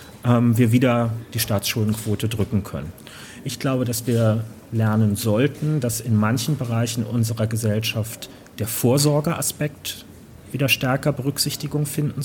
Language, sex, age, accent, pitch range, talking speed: German, male, 30-49, German, 110-130 Hz, 120 wpm